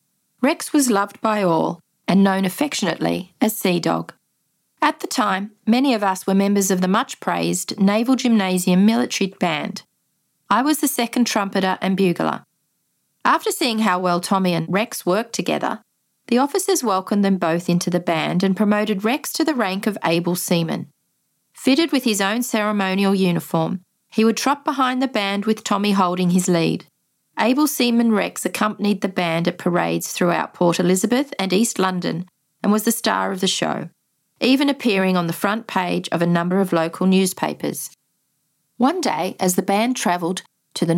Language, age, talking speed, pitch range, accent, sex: English, 40-59, 170 wpm, 180-235 Hz, Australian, female